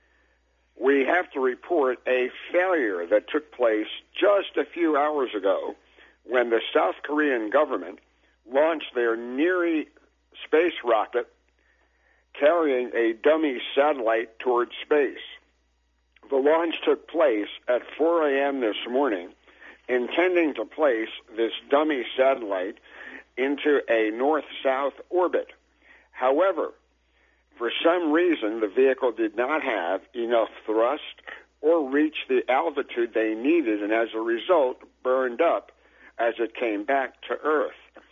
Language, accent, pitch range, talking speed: English, American, 115-155 Hz, 125 wpm